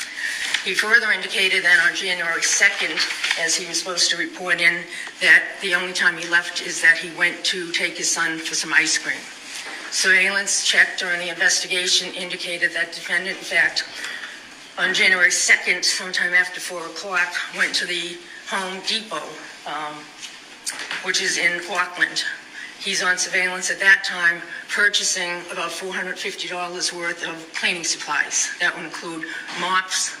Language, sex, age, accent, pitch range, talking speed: English, female, 50-69, American, 170-185 Hz, 150 wpm